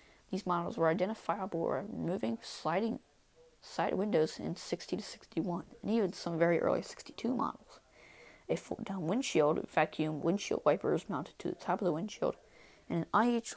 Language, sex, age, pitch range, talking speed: English, female, 20-39, 165-210 Hz, 165 wpm